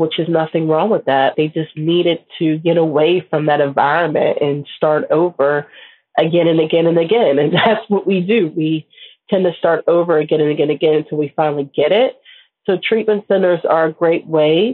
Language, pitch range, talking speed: English, 155-180 Hz, 205 wpm